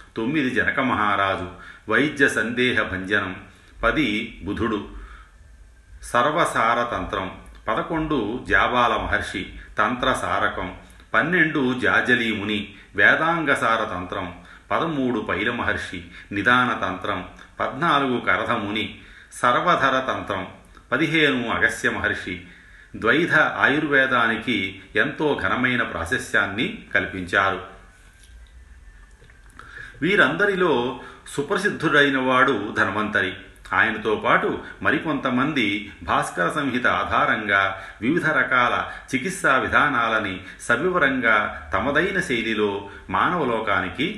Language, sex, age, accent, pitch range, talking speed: Telugu, male, 40-59, native, 90-120 Hz, 65 wpm